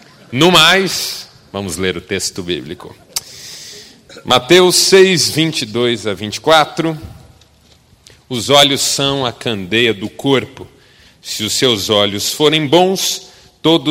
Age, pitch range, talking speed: 40-59, 110-145 Hz, 110 wpm